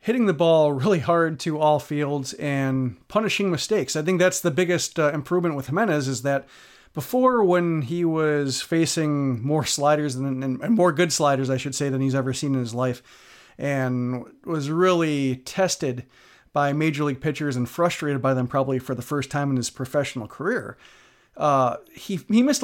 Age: 40-59